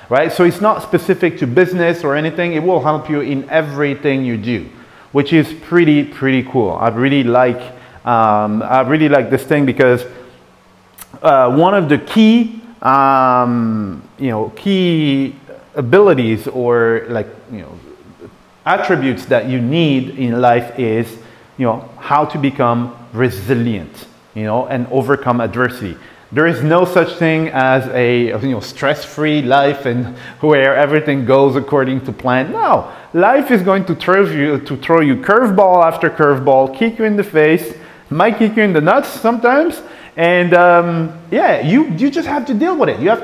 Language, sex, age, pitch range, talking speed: English, male, 30-49, 125-175 Hz, 165 wpm